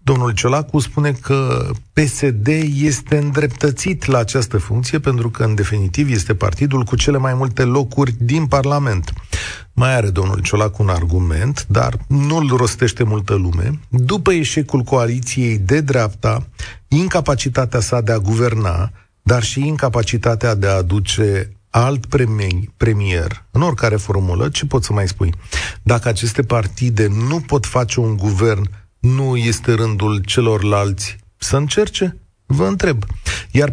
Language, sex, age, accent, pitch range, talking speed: Romanian, male, 40-59, native, 105-145 Hz, 140 wpm